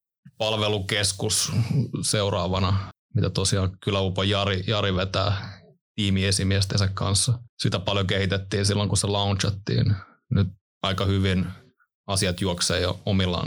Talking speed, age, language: 105 wpm, 20-39, Finnish